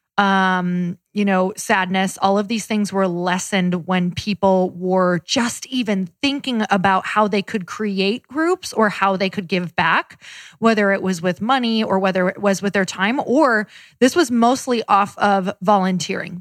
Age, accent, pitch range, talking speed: 20-39, American, 190-225 Hz, 170 wpm